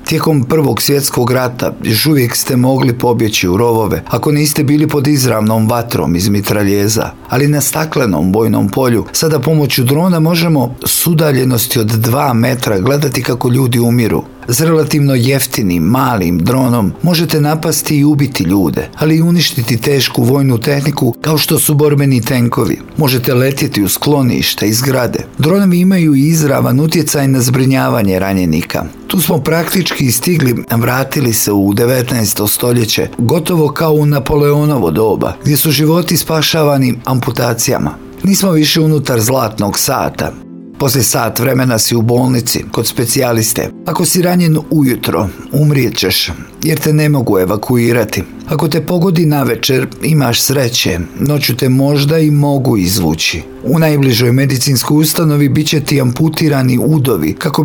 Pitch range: 120-150 Hz